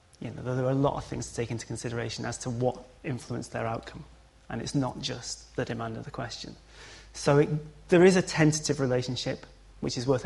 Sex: male